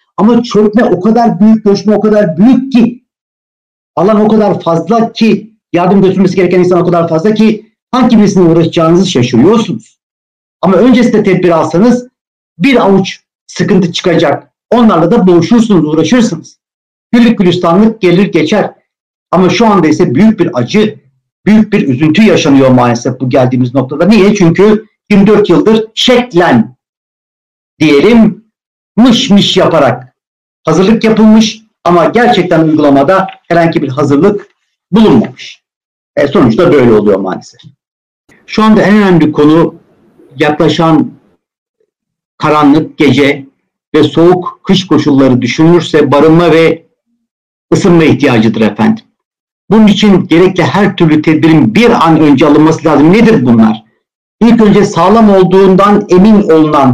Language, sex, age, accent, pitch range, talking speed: Turkish, male, 60-79, native, 155-215 Hz, 125 wpm